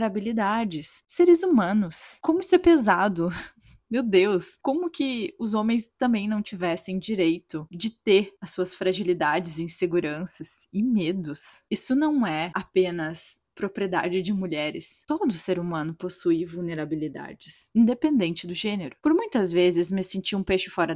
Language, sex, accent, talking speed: Portuguese, female, Brazilian, 135 wpm